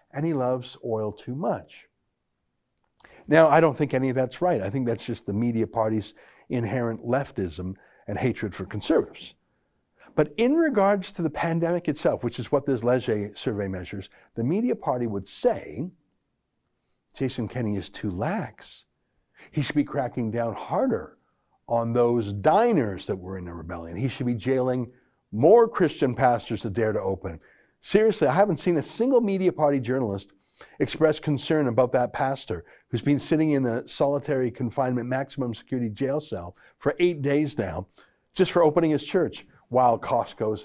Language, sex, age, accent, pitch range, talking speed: English, male, 60-79, American, 110-150 Hz, 165 wpm